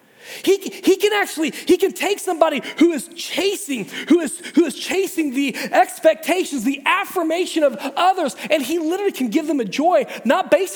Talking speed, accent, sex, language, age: 180 wpm, American, male, English, 30-49